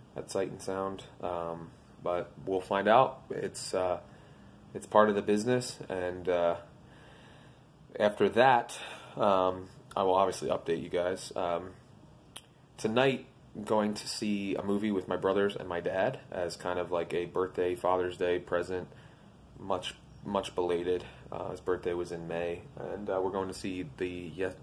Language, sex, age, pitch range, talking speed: English, male, 20-39, 90-100 Hz, 165 wpm